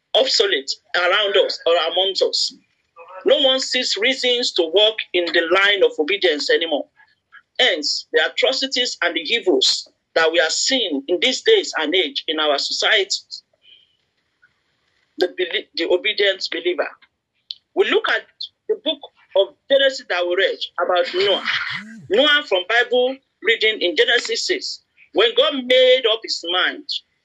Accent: Nigerian